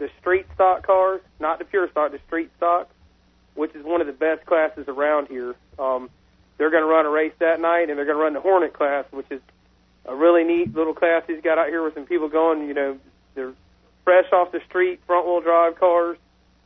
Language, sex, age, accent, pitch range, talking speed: English, male, 40-59, American, 155-190 Hz, 225 wpm